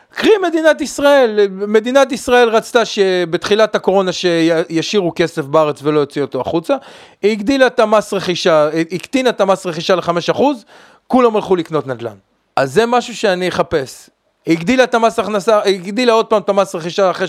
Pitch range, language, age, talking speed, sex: 135-205 Hz, Hebrew, 30-49, 160 wpm, male